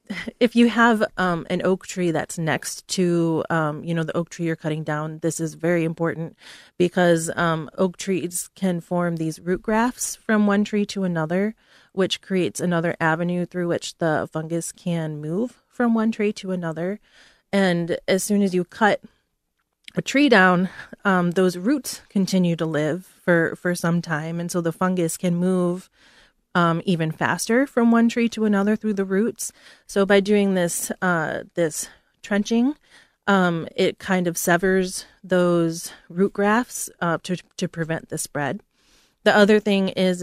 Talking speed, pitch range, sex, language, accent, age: 170 wpm, 170-205 Hz, female, English, American, 30-49